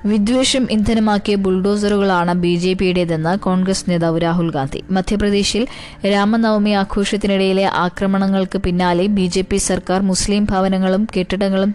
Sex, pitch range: female, 180-200 Hz